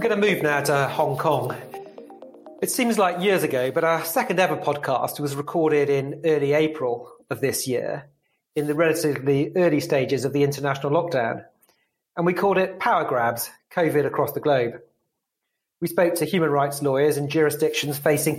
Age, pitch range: 30-49, 140-195 Hz